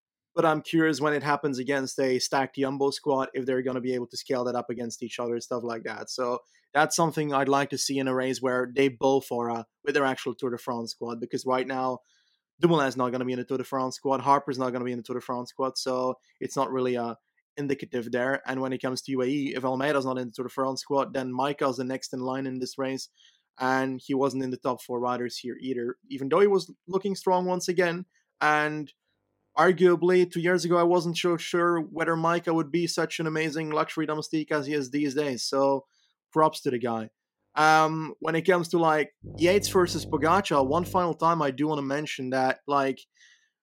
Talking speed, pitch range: 240 wpm, 130-160 Hz